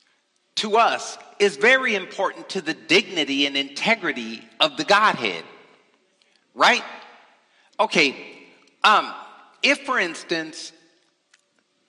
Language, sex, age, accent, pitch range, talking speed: English, male, 50-69, American, 190-260 Hz, 95 wpm